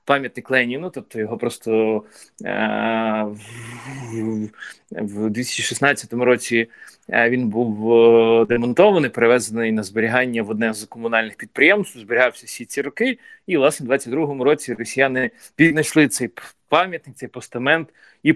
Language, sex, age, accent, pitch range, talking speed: Ukrainian, male, 30-49, native, 115-140 Hz, 120 wpm